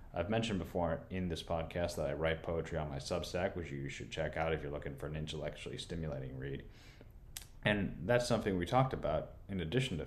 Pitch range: 75-95 Hz